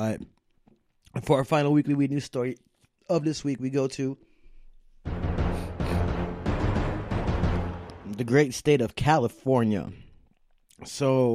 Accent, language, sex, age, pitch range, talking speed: American, English, male, 20-39, 110-135 Hz, 110 wpm